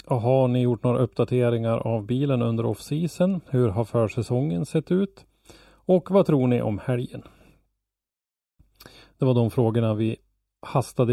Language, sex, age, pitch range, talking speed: Swedish, male, 30-49, 110-135 Hz, 140 wpm